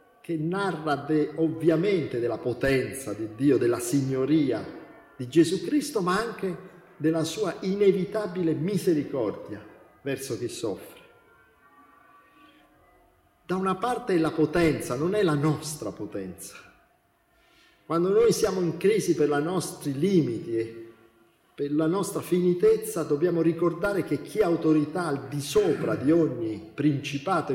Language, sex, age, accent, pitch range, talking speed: Italian, male, 50-69, native, 140-190 Hz, 130 wpm